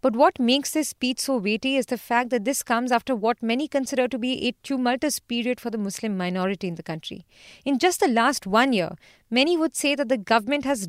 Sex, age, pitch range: female, 30-49, 230-285 Hz